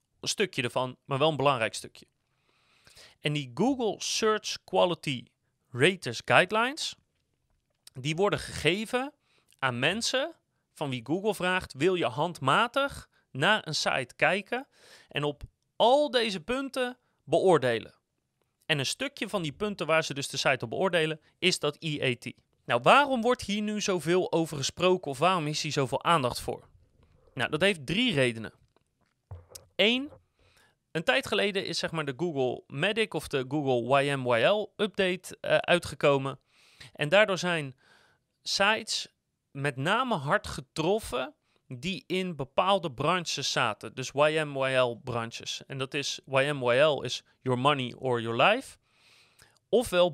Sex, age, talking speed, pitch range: male, 30-49, 140 wpm, 135-195 Hz